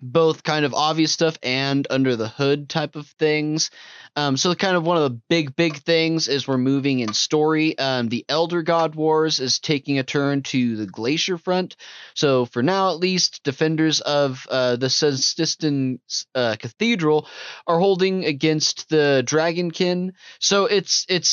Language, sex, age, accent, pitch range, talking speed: English, male, 20-39, American, 130-170 Hz, 170 wpm